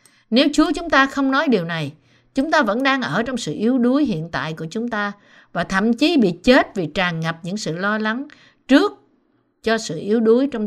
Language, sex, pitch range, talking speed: Vietnamese, female, 165-250 Hz, 225 wpm